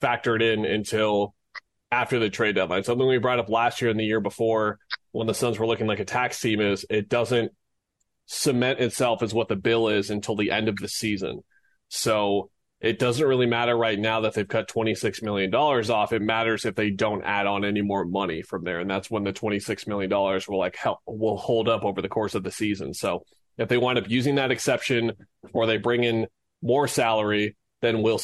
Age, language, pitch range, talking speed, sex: 30-49, English, 105-120 Hz, 215 wpm, male